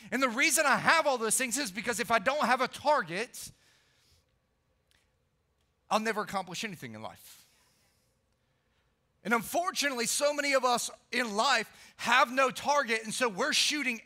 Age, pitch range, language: 40-59, 180-250 Hz, English